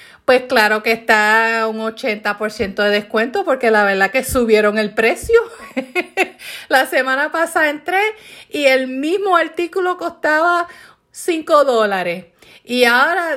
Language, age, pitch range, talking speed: Spanish, 30-49, 210-275 Hz, 130 wpm